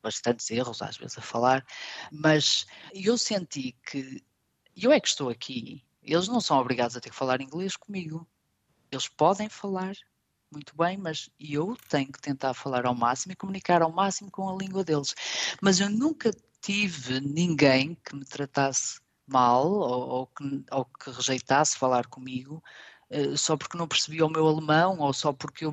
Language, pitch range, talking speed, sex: Portuguese, 130-170 Hz, 175 wpm, female